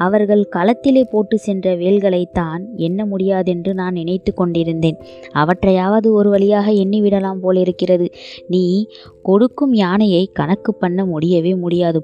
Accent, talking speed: native, 110 wpm